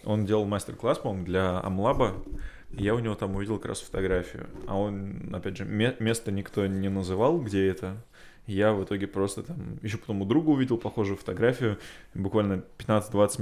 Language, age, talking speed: Russian, 20-39, 175 wpm